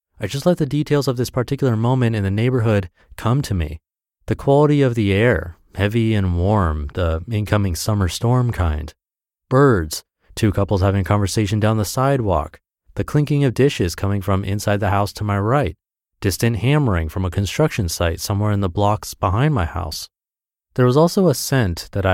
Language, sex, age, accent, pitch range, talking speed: English, male, 30-49, American, 90-120 Hz, 180 wpm